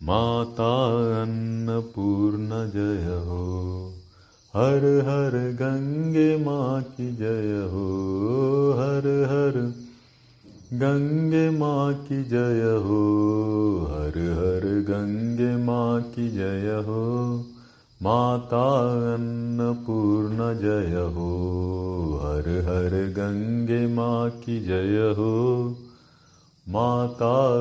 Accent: native